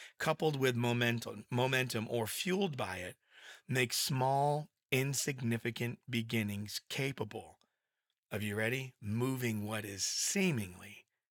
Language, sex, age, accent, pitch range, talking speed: English, male, 40-59, American, 105-135 Hz, 105 wpm